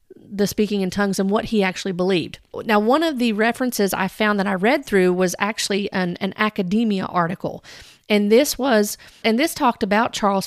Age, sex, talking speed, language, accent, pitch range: 40-59, female, 195 wpm, English, American, 190-225 Hz